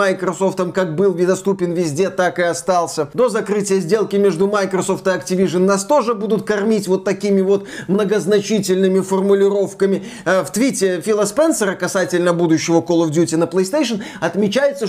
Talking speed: 140 wpm